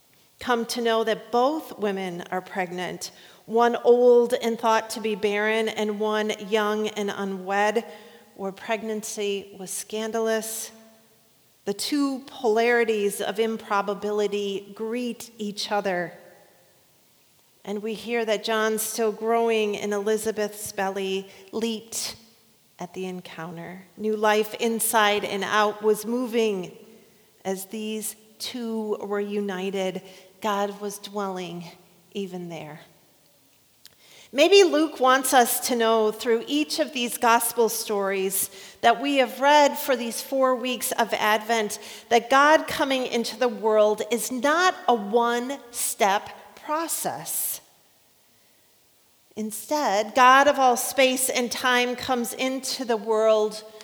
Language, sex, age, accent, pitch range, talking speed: English, female, 40-59, American, 205-245 Hz, 120 wpm